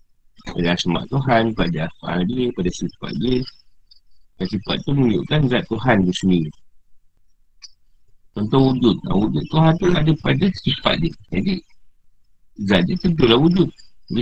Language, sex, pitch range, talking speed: Malay, male, 95-125 Hz, 130 wpm